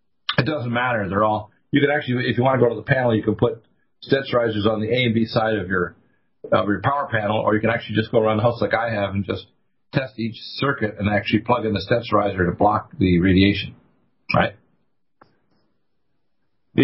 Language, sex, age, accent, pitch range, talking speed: English, male, 50-69, American, 105-125 Hz, 215 wpm